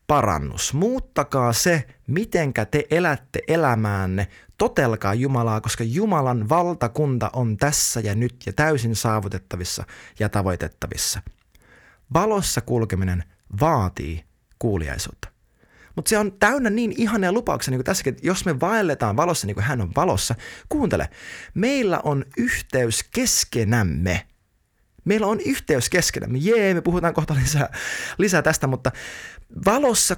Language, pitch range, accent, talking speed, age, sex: Finnish, 105-165 Hz, native, 125 wpm, 20-39, male